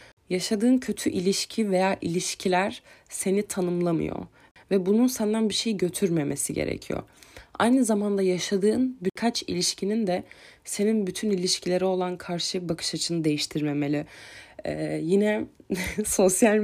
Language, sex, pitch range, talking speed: Turkish, female, 175-215 Hz, 110 wpm